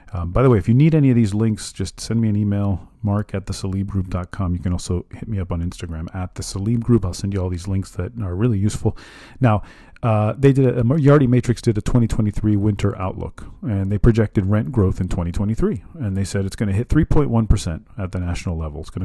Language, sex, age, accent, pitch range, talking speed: English, male, 40-59, American, 95-115 Hz, 235 wpm